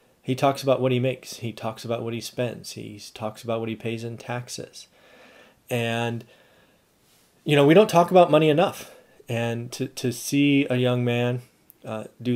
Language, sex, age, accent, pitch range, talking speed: English, male, 30-49, American, 110-125 Hz, 185 wpm